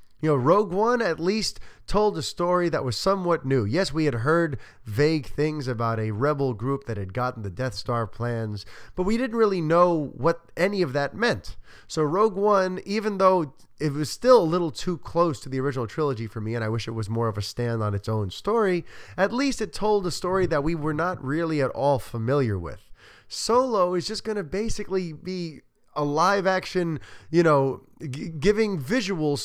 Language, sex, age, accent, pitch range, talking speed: English, male, 20-39, American, 115-175 Hz, 205 wpm